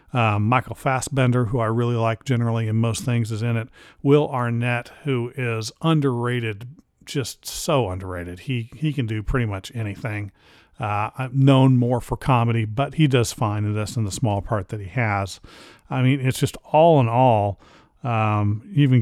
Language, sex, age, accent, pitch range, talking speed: English, male, 40-59, American, 110-135 Hz, 185 wpm